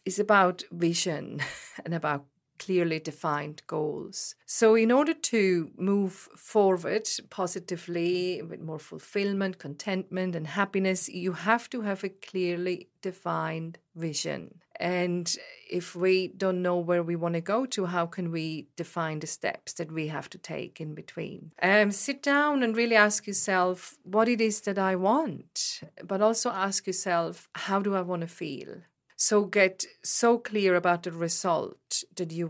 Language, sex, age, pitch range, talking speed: English, female, 40-59, 165-200 Hz, 155 wpm